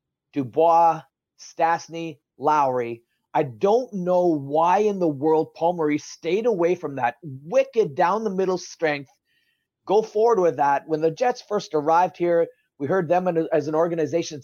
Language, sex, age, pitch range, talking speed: English, male, 30-49, 160-235 Hz, 150 wpm